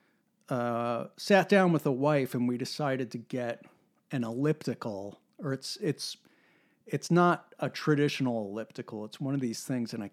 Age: 50-69